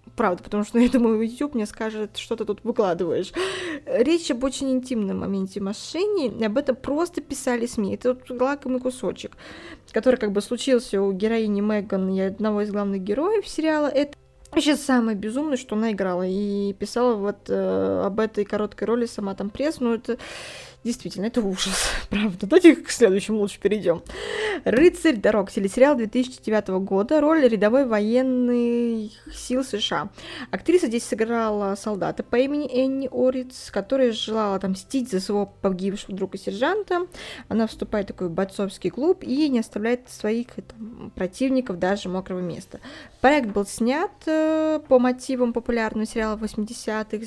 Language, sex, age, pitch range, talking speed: Russian, female, 20-39, 205-260 Hz, 150 wpm